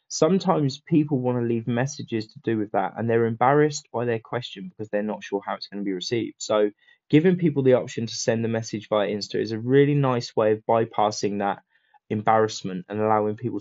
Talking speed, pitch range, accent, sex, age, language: 215 wpm, 105-135 Hz, British, male, 20-39, English